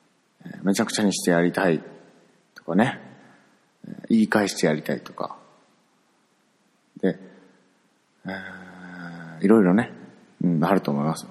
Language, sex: Japanese, male